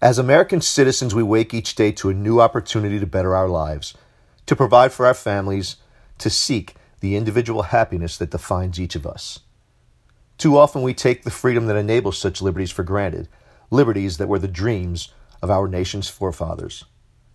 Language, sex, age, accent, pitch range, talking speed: English, male, 50-69, American, 95-120 Hz, 175 wpm